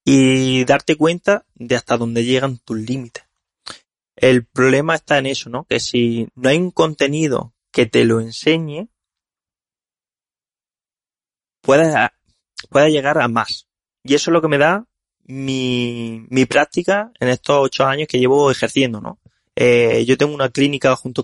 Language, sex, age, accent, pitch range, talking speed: Spanish, male, 20-39, Spanish, 120-150 Hz, 150 wpm